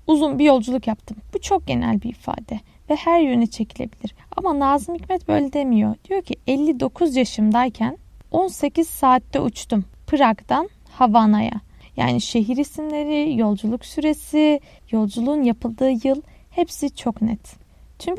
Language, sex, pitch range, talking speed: Turkish, female, 245-310 Hz, 130 wpm